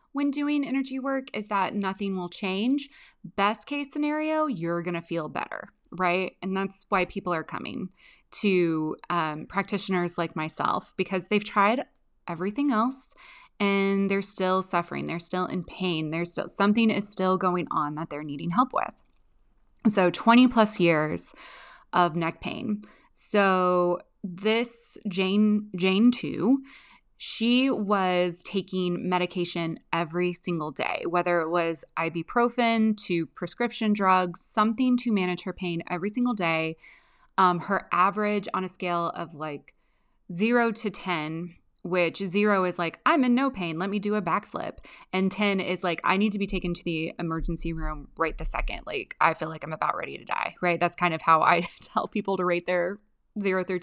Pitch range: 175-215 Hz